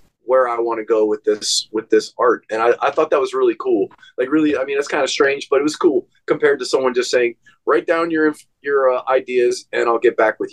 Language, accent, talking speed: English, American, 260 wpm